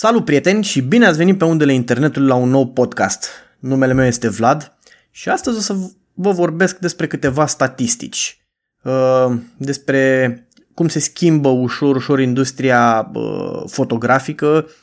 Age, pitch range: 20-39, 125-145 Hz